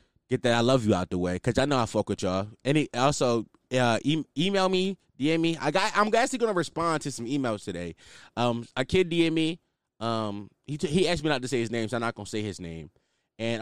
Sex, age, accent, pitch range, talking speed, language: male, 20-39, American, 105-150 Hz, 250 wpm, English